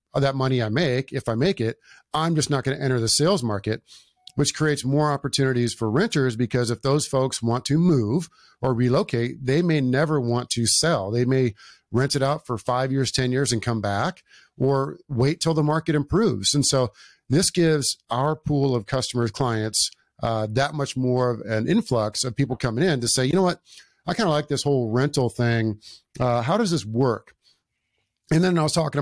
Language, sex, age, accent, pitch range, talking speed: English, male, 50-69, American, 120-150 Hz, 205 wpm